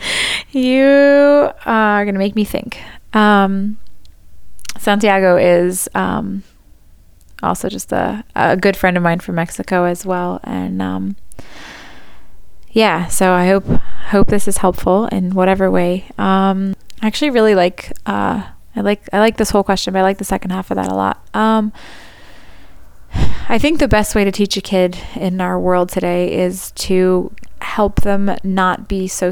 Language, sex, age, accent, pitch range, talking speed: English, female, 20-39, American, 175-205 Hz, 160 wpm